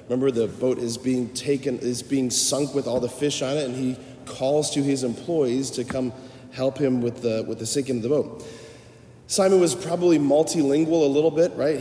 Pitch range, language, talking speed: 120-145 Hz, English, 210 wpm